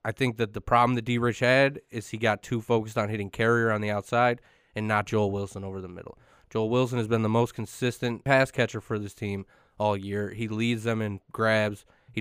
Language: English